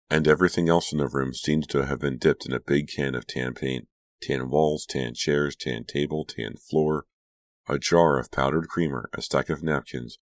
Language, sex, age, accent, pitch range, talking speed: English, male, 40-59, American, 65-80 Hz, 205 wpm